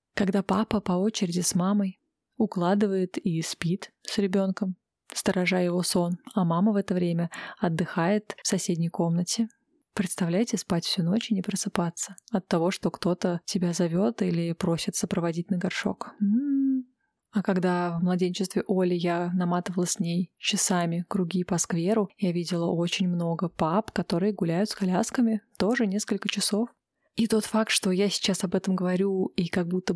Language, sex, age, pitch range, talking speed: Russian, female, 20-39, 180-210 Hz, 155 wpm